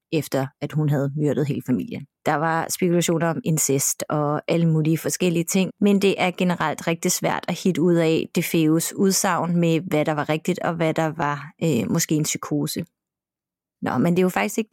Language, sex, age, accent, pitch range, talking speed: Danish, female, 30-49, native, 160-205 Hz, 205 wpm